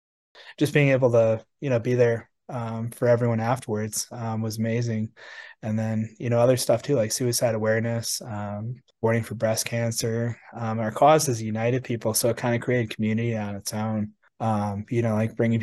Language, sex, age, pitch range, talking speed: English, male, 20-39, 110-120 Hz, 190 wpm